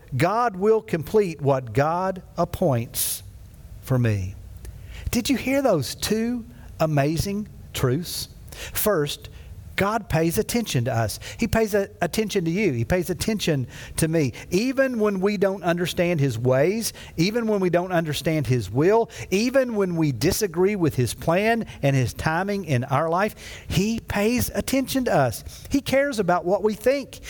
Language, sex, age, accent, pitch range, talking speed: English, male, 50-69, American, 125-200 Hz, 150 wpm